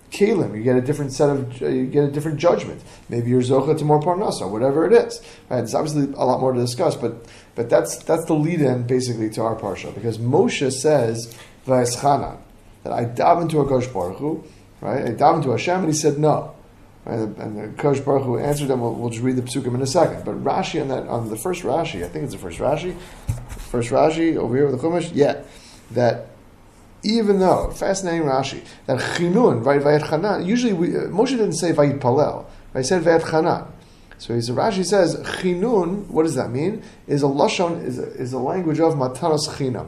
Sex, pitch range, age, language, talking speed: male, 120-170 Hz, 30-49, English, 205 wpm